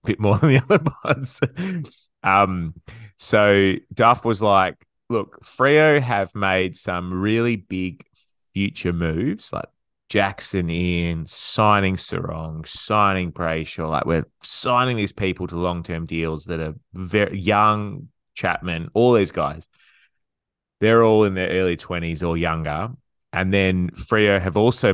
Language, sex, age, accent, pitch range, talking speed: English, male, 20-39, Australian, 85-110 Hz, 140 wpm